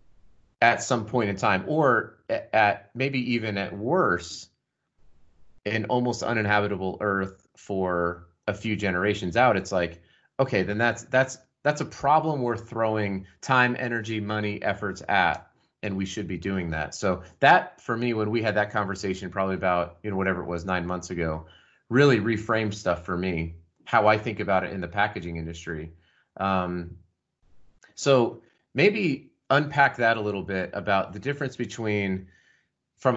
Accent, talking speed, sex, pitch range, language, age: American, 160 wpm, male, 90-115 Hz, English, 30-49